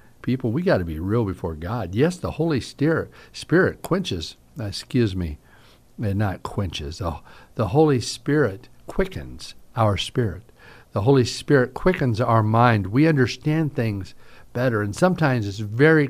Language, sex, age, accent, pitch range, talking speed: English, male, 50-69, American, 100-140 Hz, 140 wpm